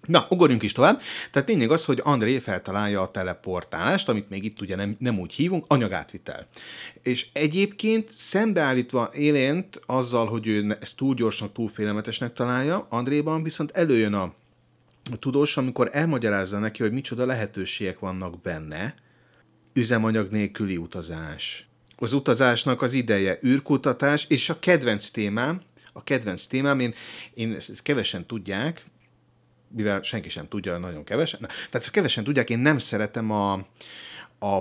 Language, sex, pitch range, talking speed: Hungarian, male, 100-130 Hz, 140 wpm